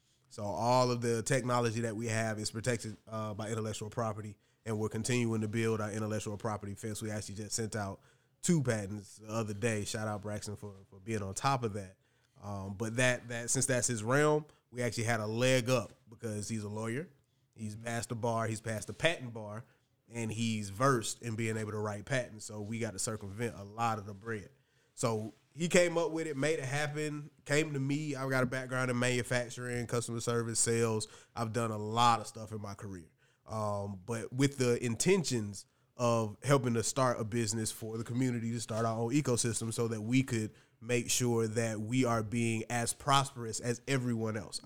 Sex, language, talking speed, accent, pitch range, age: male, English, 205 wpm, American, 110-125 Hz, 30-49